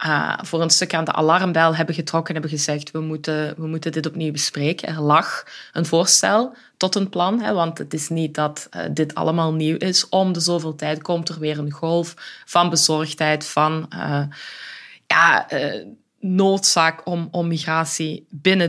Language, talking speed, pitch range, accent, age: Dutch, 175 wpm, 155-175 Hz, Belgian, 20-39